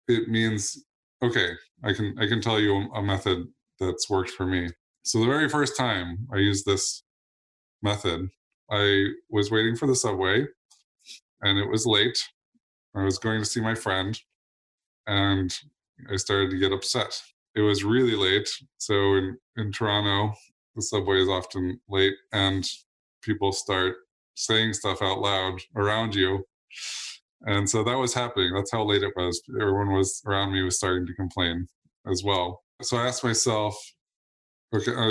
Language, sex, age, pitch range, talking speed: English, male, 20-39, 95-110 Hz, 160 wpm